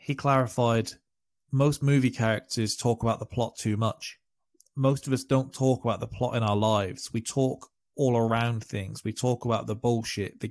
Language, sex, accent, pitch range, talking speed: English, male, British, 110-130 Hz, 190 wpm